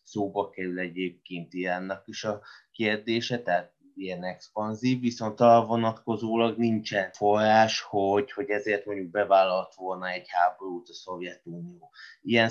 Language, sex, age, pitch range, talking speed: Hungarian, male, 20-39, 95-115 Hz, 125 wpm